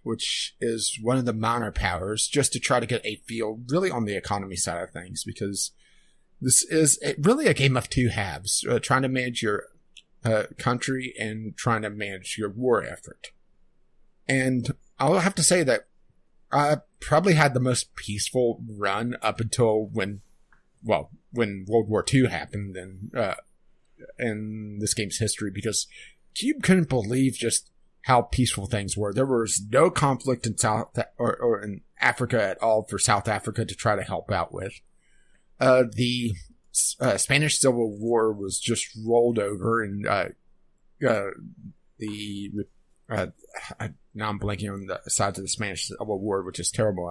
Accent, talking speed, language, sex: American, 165 wpm, English, male